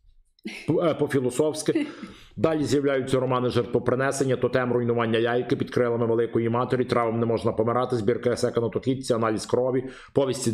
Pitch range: 120-140 Hz